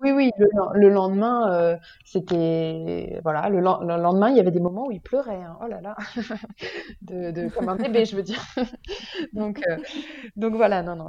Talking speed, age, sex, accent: 200 wpm, 20-39, female, French